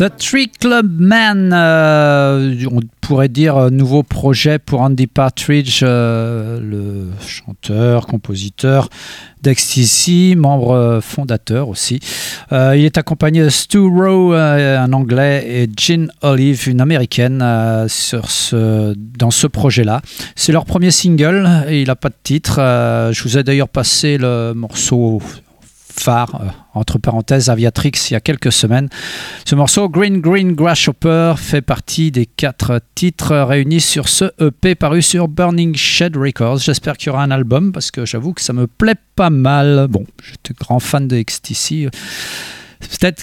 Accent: French